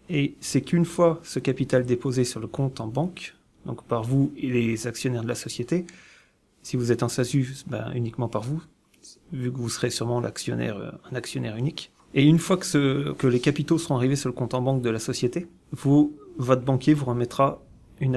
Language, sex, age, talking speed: French, male, 30-49, 210 wpm